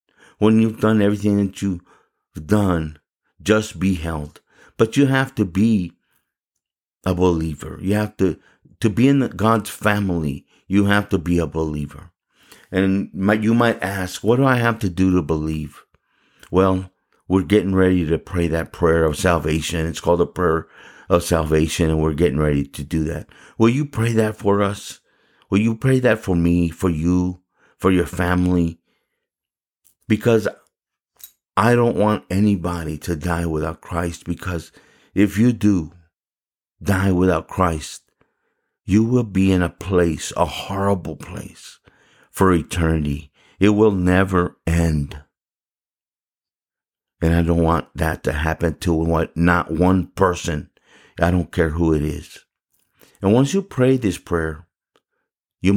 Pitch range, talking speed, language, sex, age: 80-105 Hz, 150 wpm, English, male, 50-69